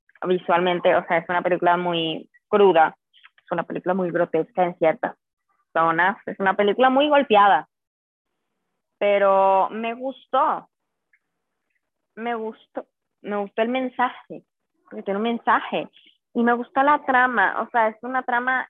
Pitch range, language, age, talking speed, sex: 185-245 Hz, Spanish, 20-39, 140 wpm, female